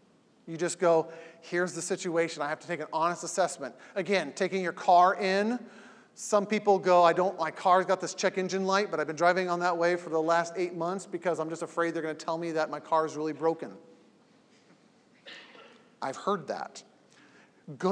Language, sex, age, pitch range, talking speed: English, male, 40-59, 160-185 Hz, 205 wpm